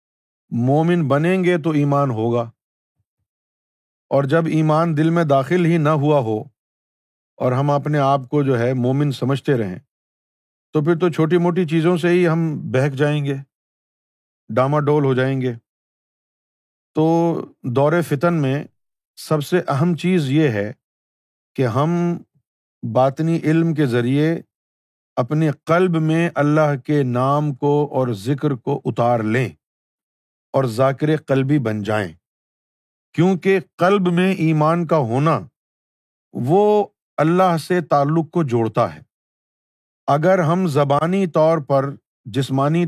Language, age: Urdu, 50-69